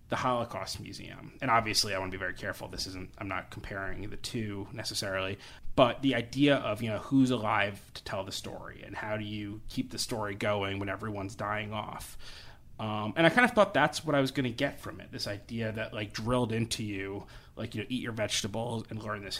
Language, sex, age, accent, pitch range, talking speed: English, male, 30-49, American, 105-125 Hz, 230 wpm